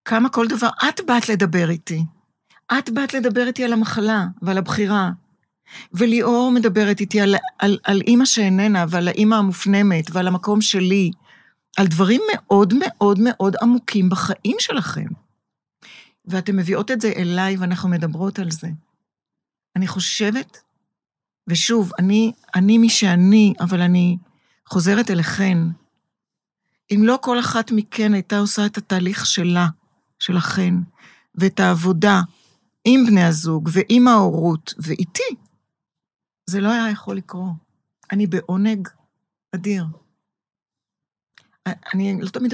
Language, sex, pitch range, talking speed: Hebrew, female, 180-215 Hz, 120 wpm